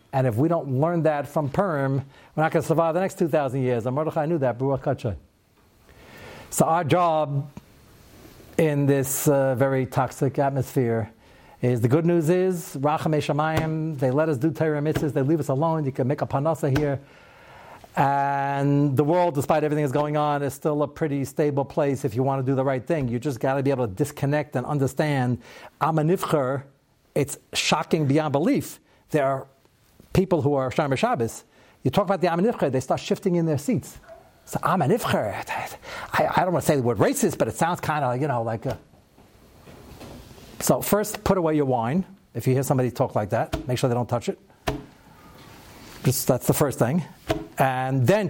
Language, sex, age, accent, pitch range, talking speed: English, male, 60-79, American, 130-160 Hz, 185 wpm